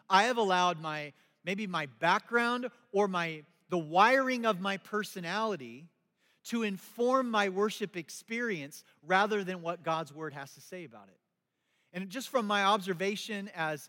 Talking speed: 150 wpm